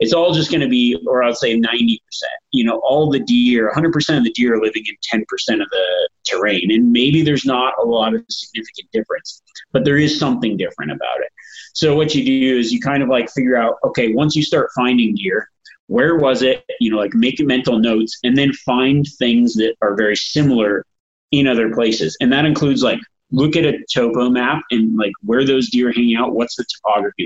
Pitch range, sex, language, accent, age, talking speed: 115-150 Hz, male, English, American, 30-49, 220 wpm